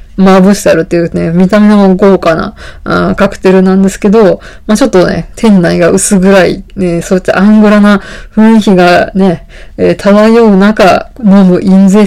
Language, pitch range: Japanese, 180-210 Hz